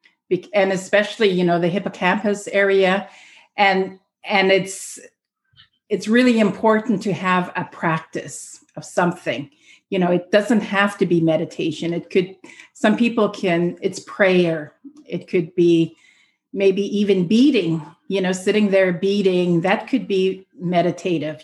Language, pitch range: English, 175-205 Hz